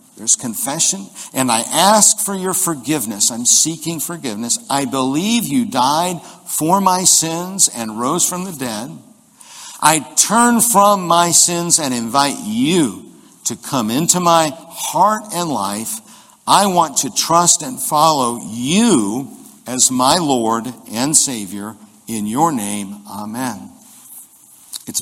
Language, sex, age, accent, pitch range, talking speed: English, male, 60-79, American, 120-185 Hz, 130 wpm